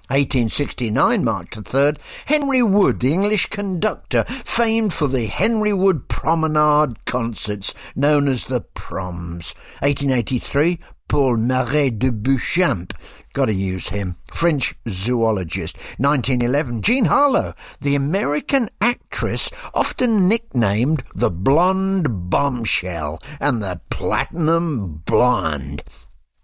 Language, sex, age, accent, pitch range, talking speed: English, male, 60-79, British, 100-160 Hz, 105 wpm